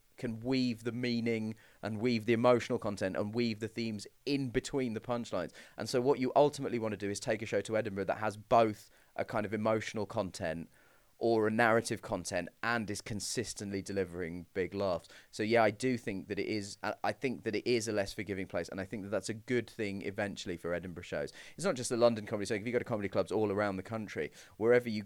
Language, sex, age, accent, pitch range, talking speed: English, male, 20-39, British, 105-125 Hz, 230 wpm